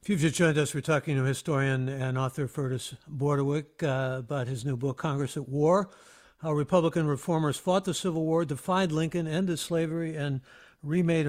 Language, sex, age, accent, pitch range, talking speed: English, male, 60-79, American, 135-165 Hz, 180 wpm